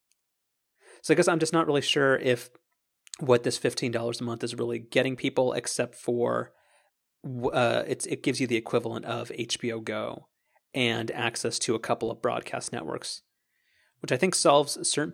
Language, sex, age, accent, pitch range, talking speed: English, male, 30-49, American, 115-145 Hz, 170 wpm